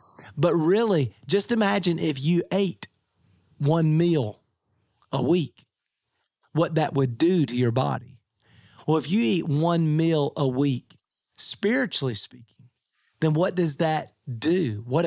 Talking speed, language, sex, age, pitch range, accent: 135 wpm, English, male, 40-59, 130-170 Hz, American